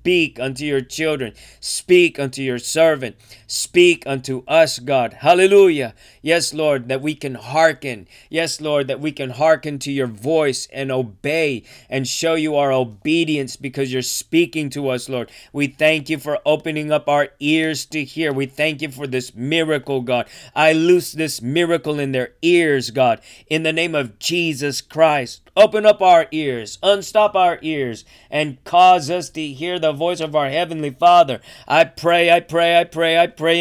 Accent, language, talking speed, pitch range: American, English, 175 wpm, 130-160 Hz